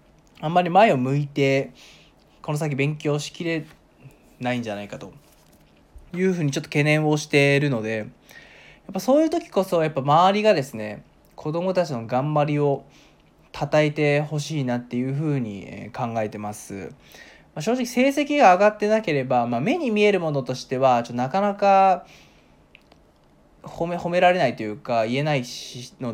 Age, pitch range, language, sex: 20-39, 125-185 Hz, Japanese, male